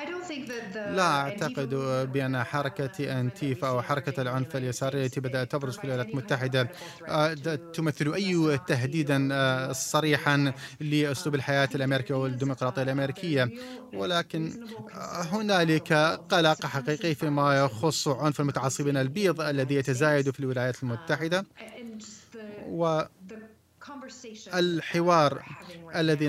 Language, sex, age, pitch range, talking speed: Arabic, male, 30-49, 135-165 Hz, 90 wpm